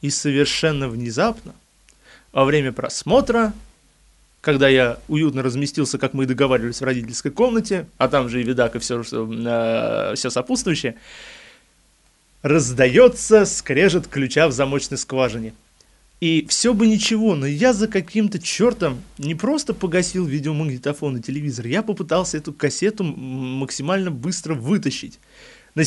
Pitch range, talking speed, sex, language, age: 130-180 Hz, 125 wpm, male, Russian, 20-39